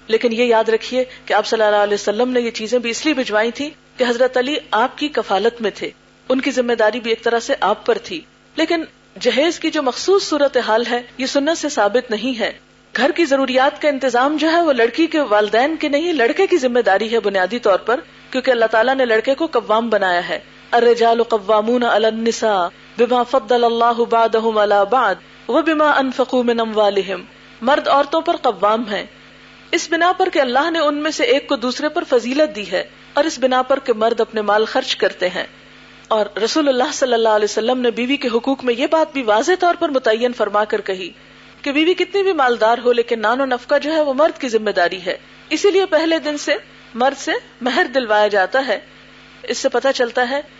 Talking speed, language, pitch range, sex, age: 210 wpm, Urdu, 225-290 Hz, female, 40-59